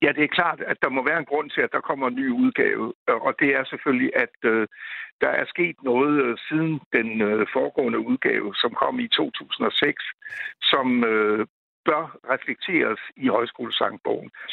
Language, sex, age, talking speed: Danish, male, 60-79, 160 wpm